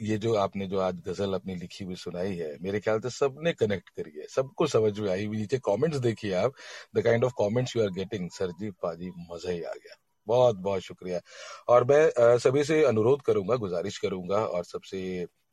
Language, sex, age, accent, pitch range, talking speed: Hindi, male, 40-59, native, 95-125 Hz, 145 wpm